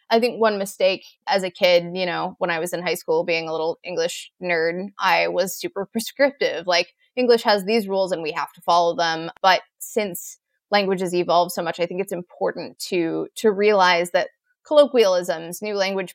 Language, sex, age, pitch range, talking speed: English, female, 20-39, 175-215 Hz, 195 wpm